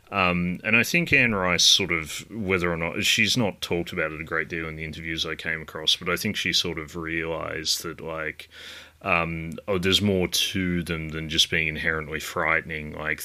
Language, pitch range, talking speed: English, 80-90 Hz, 210 wpm